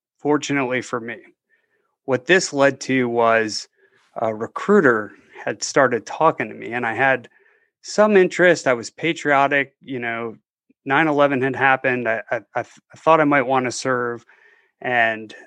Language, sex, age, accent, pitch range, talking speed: English, male, 30-49, American, 125-150 Hz, 145 wpm